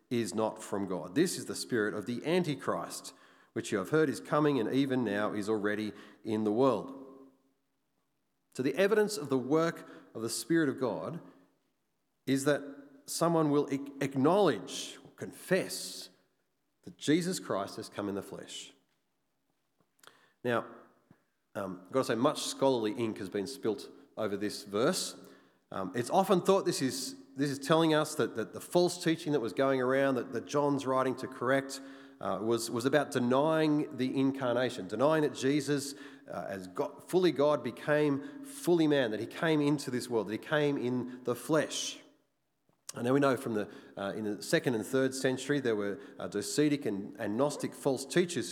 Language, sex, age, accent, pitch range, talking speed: English, male, 40-59, Australian, 115-150 Hz, 175 wpm